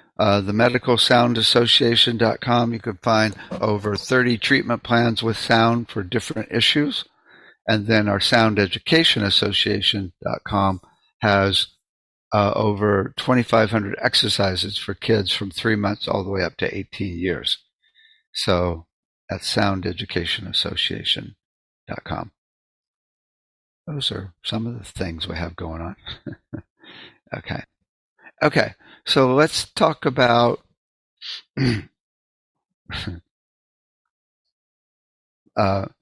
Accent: American